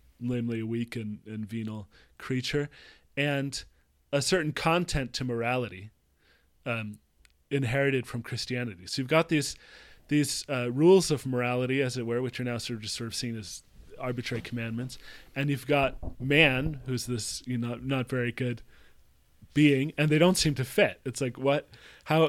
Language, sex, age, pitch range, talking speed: English, male, 20-39, 110-140 Hz, 170 wpm